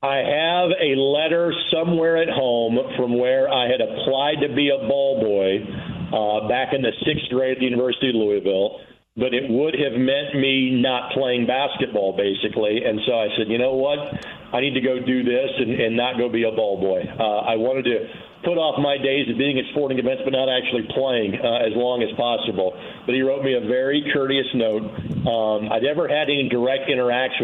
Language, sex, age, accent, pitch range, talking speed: English, male, 50-69, American, 110-135 Hz, 210 wpm